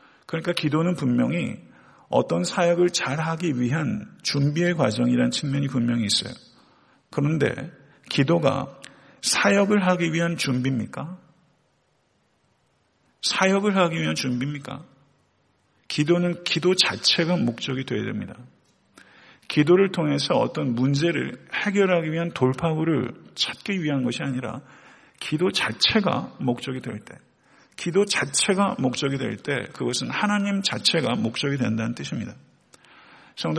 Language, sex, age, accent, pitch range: Korean, male, 50-69, native, 130-175 Hz